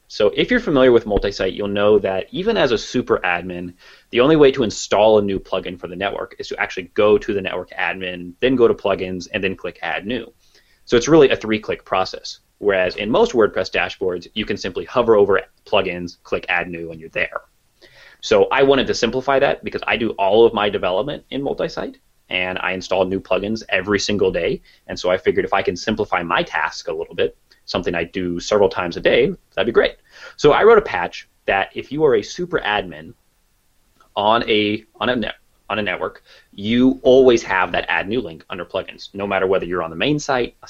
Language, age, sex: English, 30-49, male